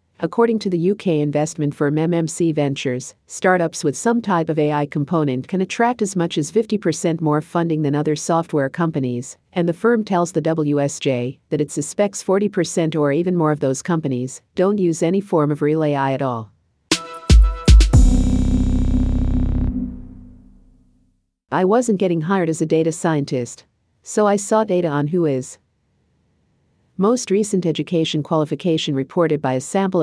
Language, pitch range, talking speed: English, 140-175 Hz, 150 wpm